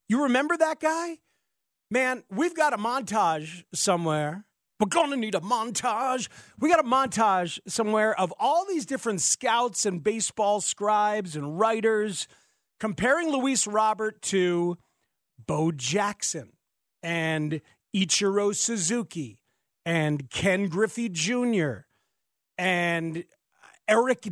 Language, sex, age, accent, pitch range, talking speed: English, male, 40-59, American, 175-245 Hz, 110 wpm